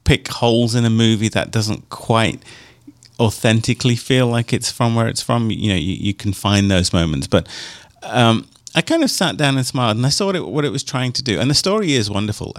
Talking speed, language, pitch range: 235 wpm, English, 90-120 Hz